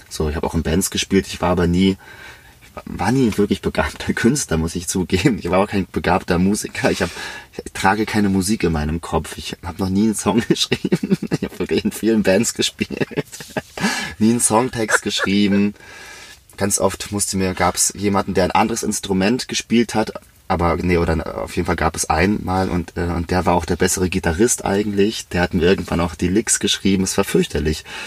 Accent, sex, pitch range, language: German, male, 85-100 Hz, German